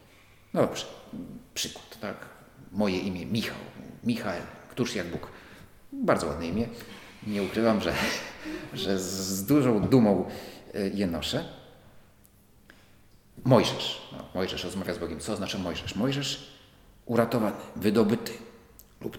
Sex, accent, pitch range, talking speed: male, native, 100-130 Hz, 115 wpm